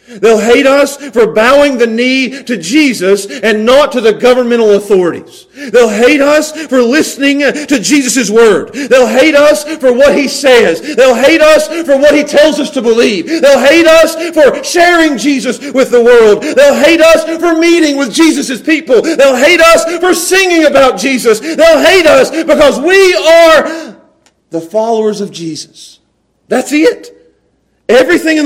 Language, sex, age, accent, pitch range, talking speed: English, male, 50-69, American, 200-305 Hz, 165 wpm